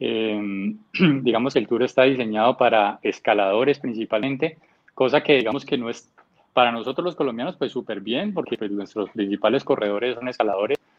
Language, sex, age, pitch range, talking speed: Spanish, male, 20-39, 110-140 Hz, 165 wpm